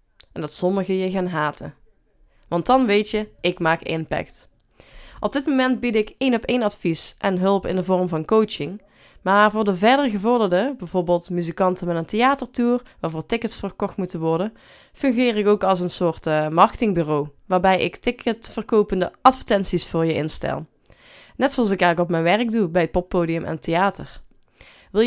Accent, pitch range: Dutch, 175-230 Hz